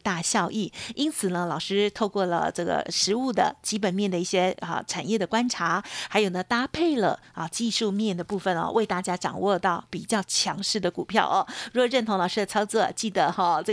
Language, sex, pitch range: Chinese, female, 190-235 Hz